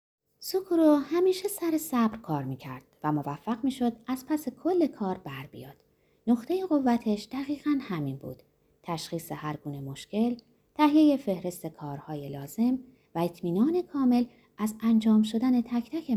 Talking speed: 140 wpm